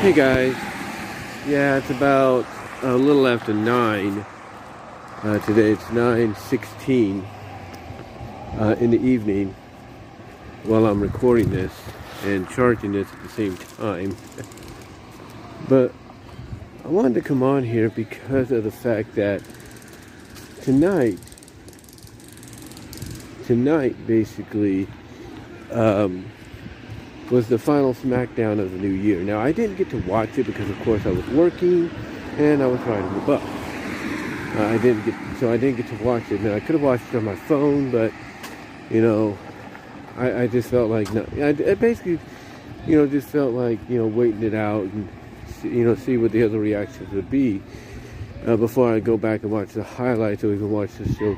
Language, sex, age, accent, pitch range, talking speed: English, male, 50-69, American, 105-125 Hz, 160 wpm